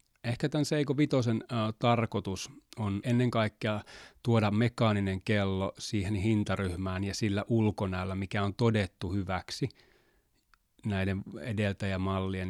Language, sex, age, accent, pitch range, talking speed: Finnish, male, 30-49, native, 90-110 Hz, 110 wpm